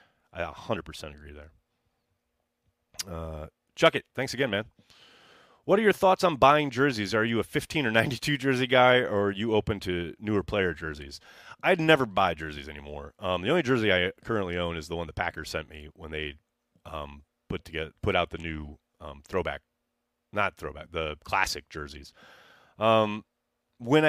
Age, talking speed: 30-49, 170 wpm